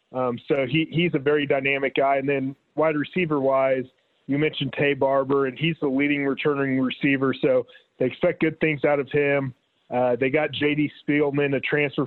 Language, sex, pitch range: English, male, 135-150 Hz